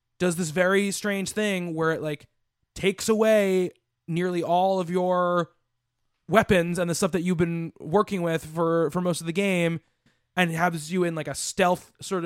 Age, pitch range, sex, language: 20-39, 150-190 Hz, male, English